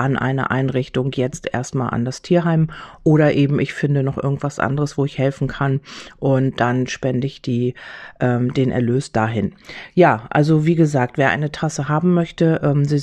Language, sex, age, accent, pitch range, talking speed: German, female, 40-59, German, 135-155 Hz, 180 wpm